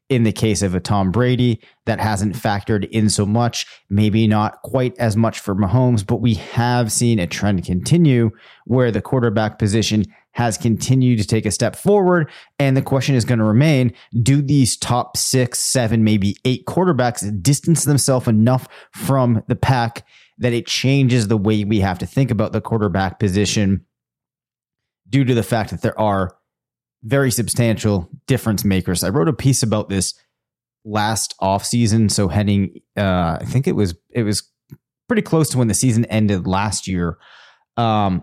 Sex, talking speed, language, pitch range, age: male, 175 wpm, English, 105-125 Hz, 30-49